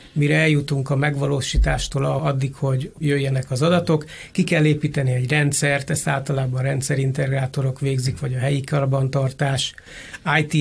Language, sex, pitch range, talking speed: Hungarian, male, 135-155 Hz, 135 wpm